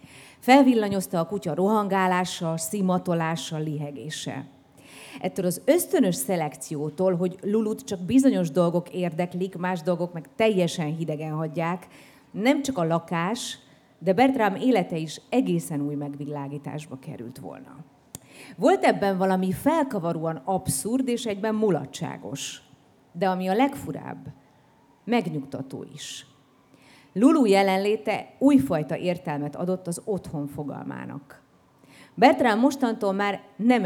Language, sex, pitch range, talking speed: Hungarian, female, 145-210 Hz, 110 wpm